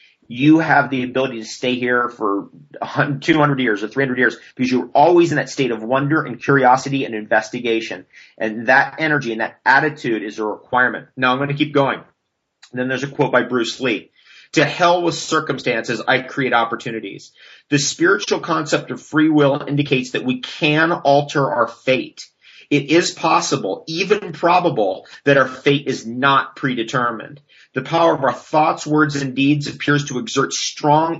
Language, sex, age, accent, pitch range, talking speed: English, male, 30-49, American, 125-150 Hz, 175 wpm